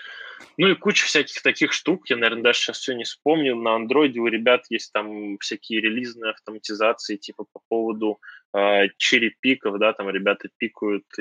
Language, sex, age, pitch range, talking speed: Russian, male, 20-39, 105-120 Hz, 165 wpm